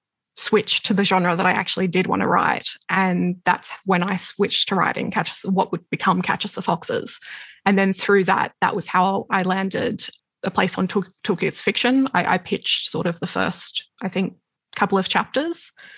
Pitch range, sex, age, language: 185-210 Hz, female, 10-29, English